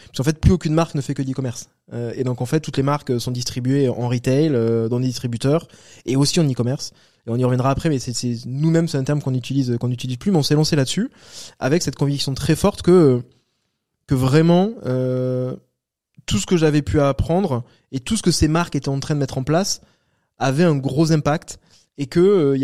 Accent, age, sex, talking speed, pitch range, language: French, 20-39, male, 235 wpm, 125-150 Hz, French